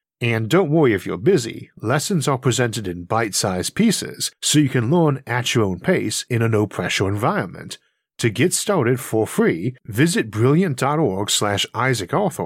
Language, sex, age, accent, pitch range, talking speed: English, male, 50-69, American, 105-145 Hz, 160 wpm